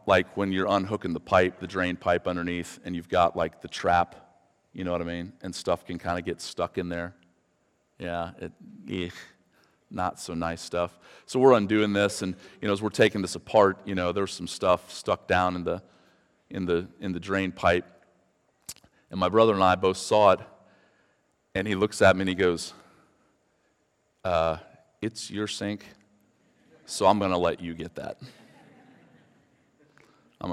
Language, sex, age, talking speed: English, male, 40-59, 180 wpm